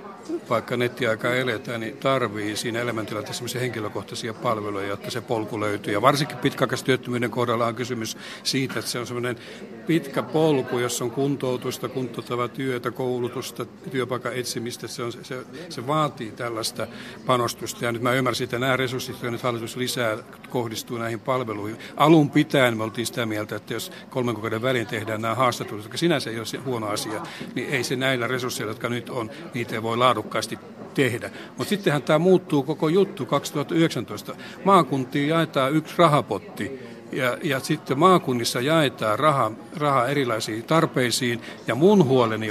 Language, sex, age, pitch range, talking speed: Finnish, male, 60-79, 115-140 Hz, 150 wpm